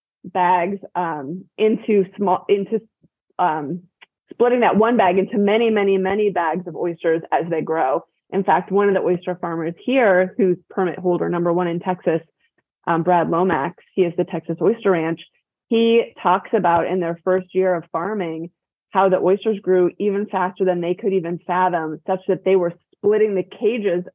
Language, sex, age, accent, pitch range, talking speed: English, female, 20-39, American, 170-195 Hz, 175 wpm